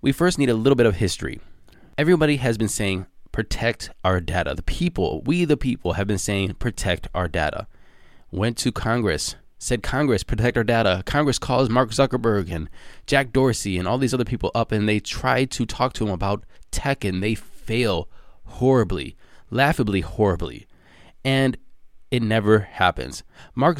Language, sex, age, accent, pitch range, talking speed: English, male, 20-39, American, 95-130 Hz, 170 wpm